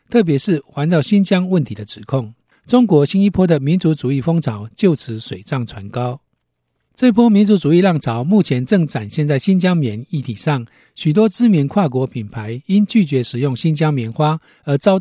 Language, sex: Chinese, male